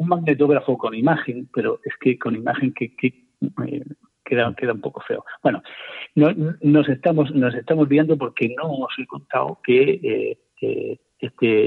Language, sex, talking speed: Spanish, male, 175 wpm